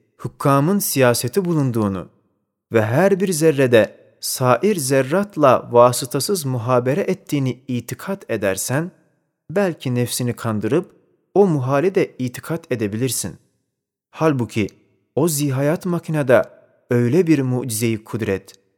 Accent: native